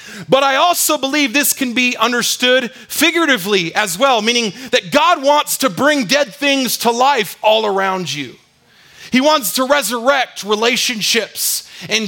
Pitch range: 165-250 Hz